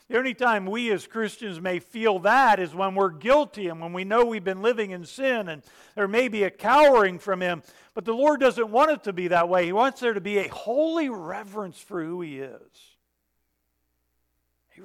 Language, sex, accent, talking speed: English, male, American, 215 wpm